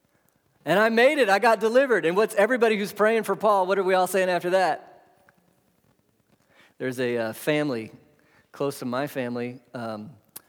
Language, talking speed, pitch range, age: English, 170 wpm, 110-150 Hz, 40-59